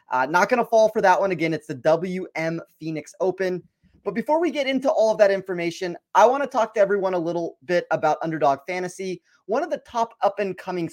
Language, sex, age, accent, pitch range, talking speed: English, male, 30-49, American, 160-215 Hz, 220 wpm